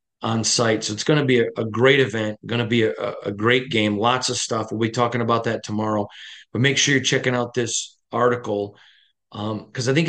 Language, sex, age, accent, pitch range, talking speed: English, male, 40-59, American, 115-135 Hz, 230 wpm